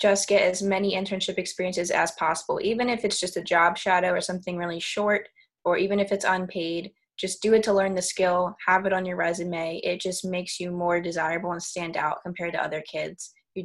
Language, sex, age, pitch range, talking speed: English, female, 20-39, 175-195 Hz, 220 wpm